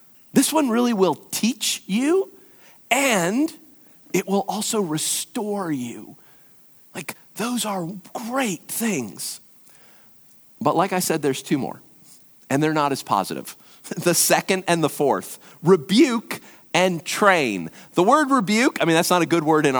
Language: English